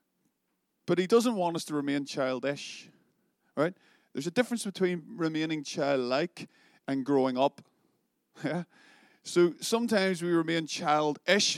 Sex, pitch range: male, 135-165 Hz